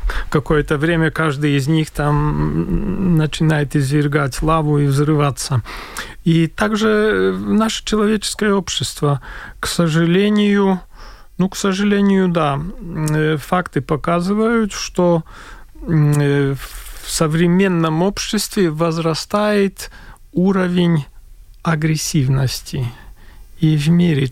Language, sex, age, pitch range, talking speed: Russian, male, 40-59, 145-180 Hz, 85 wpm